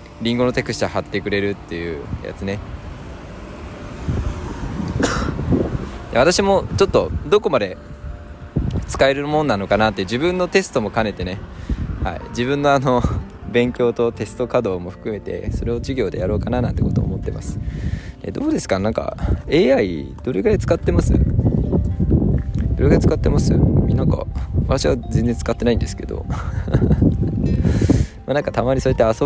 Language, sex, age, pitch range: Japanese, male, 20-39, 95-125 Hz